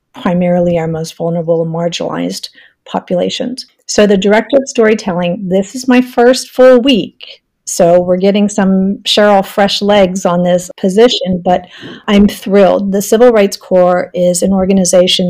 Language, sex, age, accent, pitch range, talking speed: English, female, 50-69, American, 180-210 Hz, 150 wpm